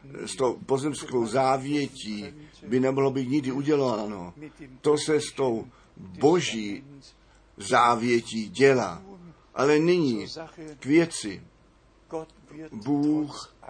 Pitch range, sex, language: 120-150 Hz, male, Czech